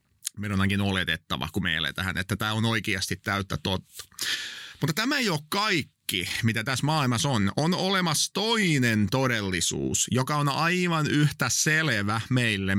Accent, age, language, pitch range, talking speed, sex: native, 30-49, Finnish, 105-140 Hz, 145 wpm, male